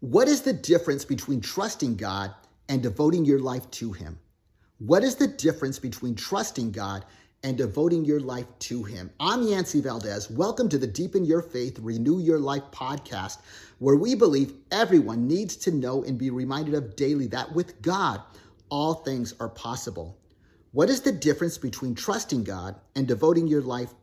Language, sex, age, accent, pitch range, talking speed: English, male, 30-49, American, 110-160 Hz, 170 wpm